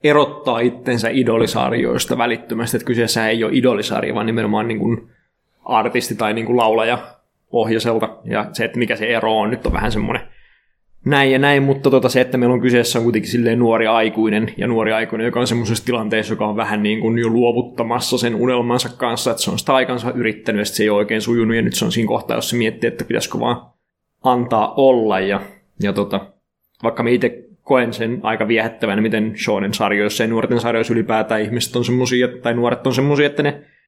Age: 20-39